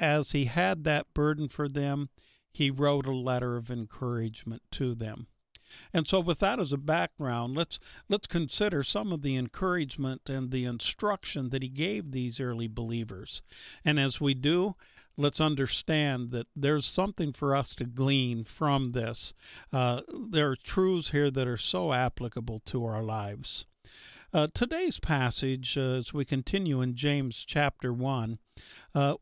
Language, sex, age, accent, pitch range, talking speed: English, male, 50-69, American, 125-150 Hz, 160 wpm